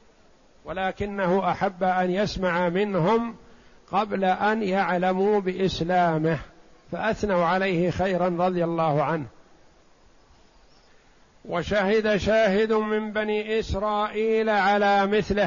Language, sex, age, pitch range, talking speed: Arabic, male, 60-79, 175-200 Hz, 85 wpm